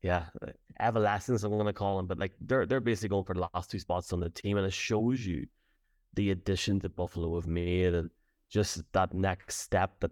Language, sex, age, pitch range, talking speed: English, male, 20-39, 90-105 Hz, 220 wpm